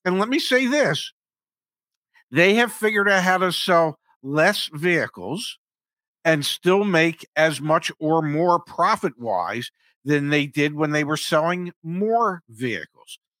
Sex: male